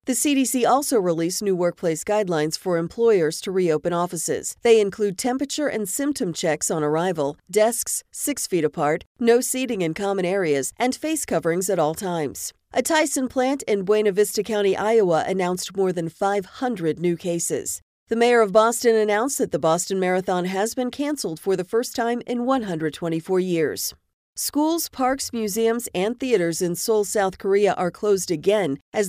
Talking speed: 165 wpm